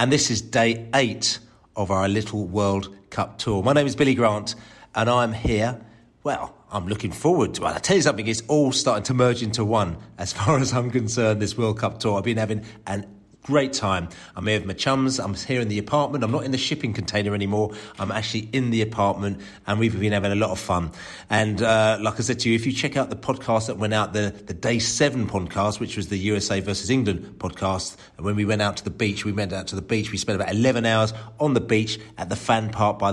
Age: 40-59